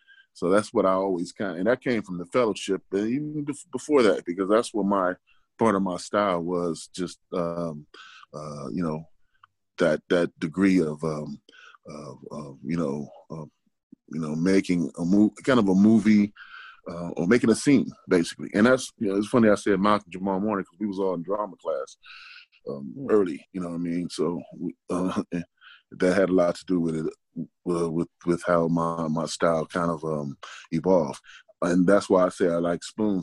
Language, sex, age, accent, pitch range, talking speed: English, male, 20-39, American, 85-100 Hz, 200 wpm